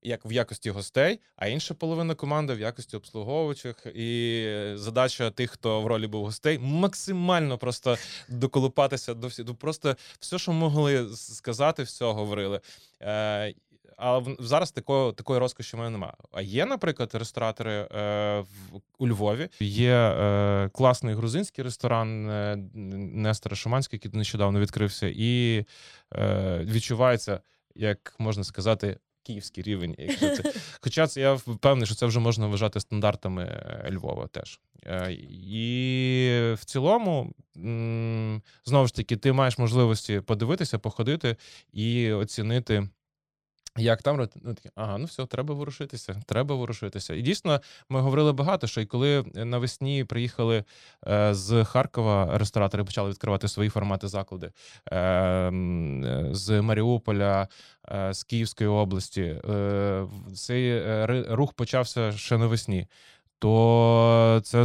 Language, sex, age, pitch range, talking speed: Ukrainian, male, 20-39, 105-130 Hz, 120 wpm